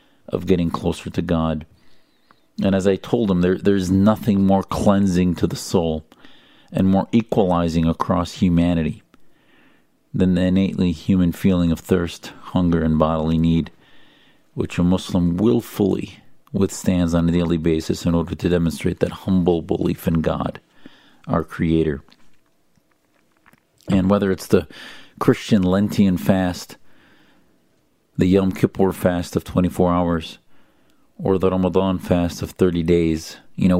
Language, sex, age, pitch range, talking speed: English, male, 50-69, 85-95 Hz, 135 wpm